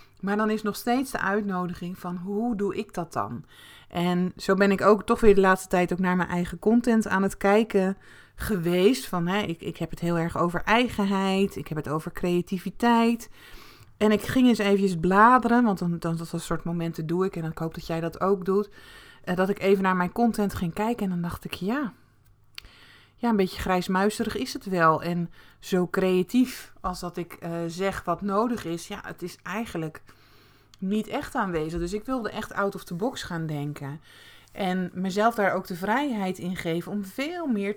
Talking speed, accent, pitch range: 200 wpm, Dutch, 175-215 Hz